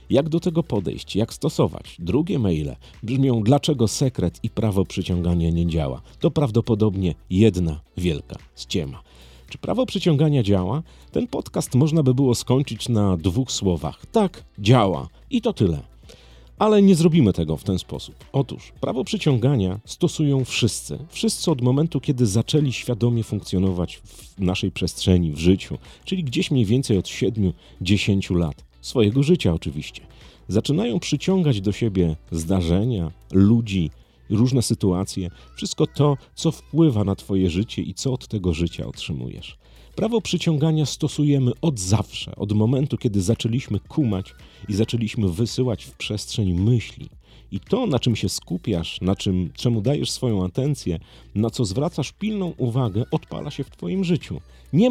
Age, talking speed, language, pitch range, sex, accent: 40-59, 145 wpm, Polish, 90-140 Hz, male, native